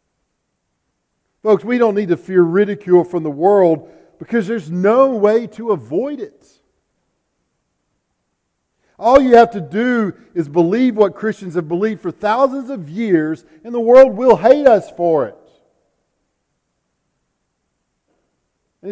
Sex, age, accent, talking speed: male, 50-69, American, 130 wpm